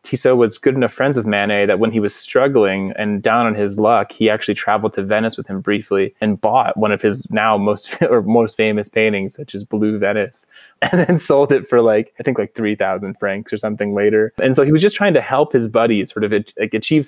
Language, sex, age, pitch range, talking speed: English, male, 20-39, 105-130 Hz, 240 wpm